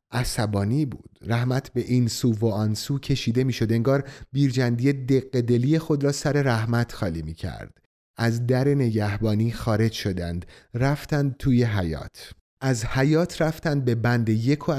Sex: male